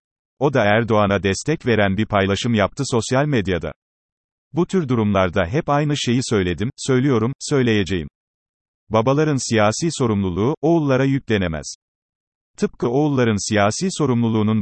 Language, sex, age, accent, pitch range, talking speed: Turkish, male, 40-59, native, 100-125 Hz, 115 wpm